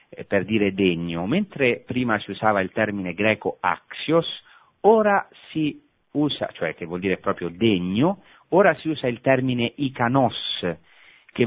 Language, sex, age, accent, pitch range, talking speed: Italian, male, 40-59, native, 90-135 Hz, 140 wpm